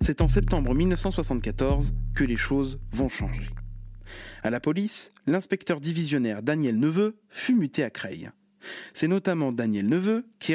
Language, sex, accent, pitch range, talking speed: French, male, French, 125-195 Hz, 140 wpm